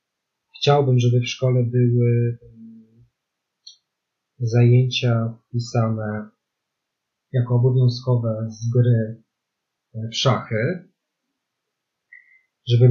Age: 30-49